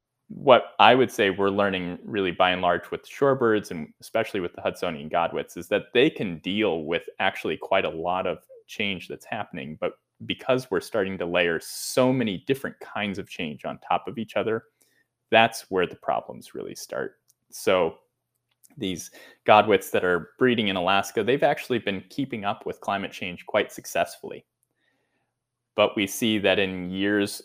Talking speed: 175 wpm